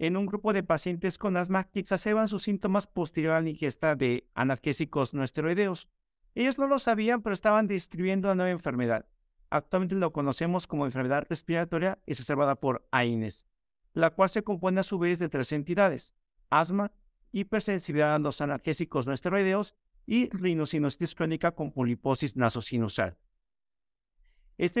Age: 50-69